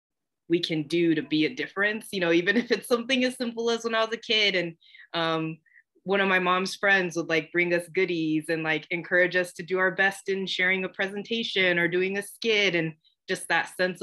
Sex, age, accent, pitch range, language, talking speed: female, 20-39, American, 155-190 Hz, English, 225 wpm